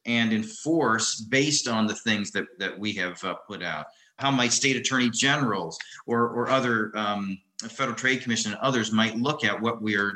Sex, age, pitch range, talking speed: male, 40-59, 105-125 Hz, 190 wpm